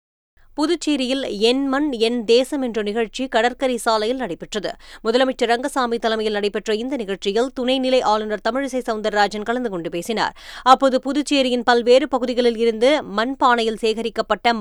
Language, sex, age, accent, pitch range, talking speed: Tamil, female, 20-39, native, 220-260 Hz, 125 wpm